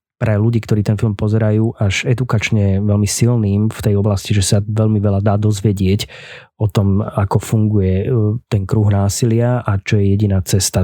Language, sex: Slovak, male